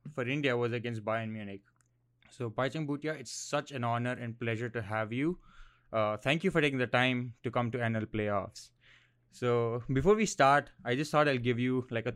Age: 20-39